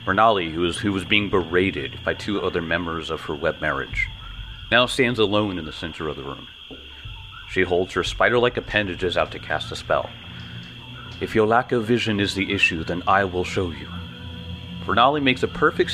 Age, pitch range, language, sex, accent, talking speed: 30-49, 85-110 Hz, English, male, American, 190 wpm